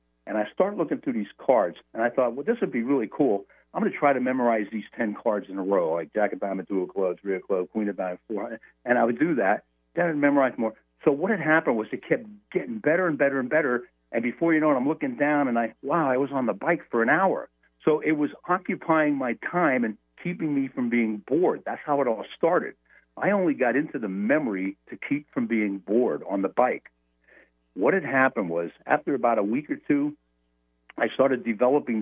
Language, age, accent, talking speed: English, 60-79, American, 235 wpm